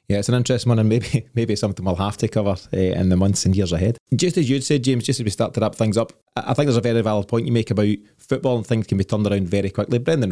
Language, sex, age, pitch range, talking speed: English, male, 20-39, 100-115 Hz, 315 wpm